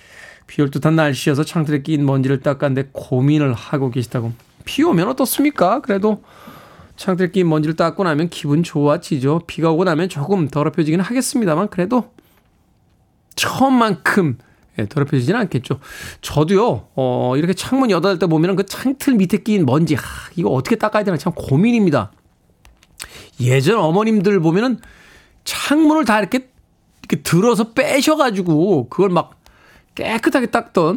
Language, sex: Korean, male